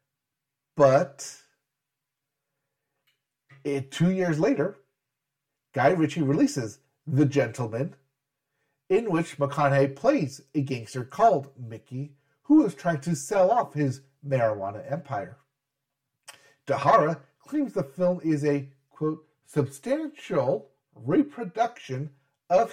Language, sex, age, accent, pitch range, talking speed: English, male, 40-59, American, 140-155 Hz, 100 wpm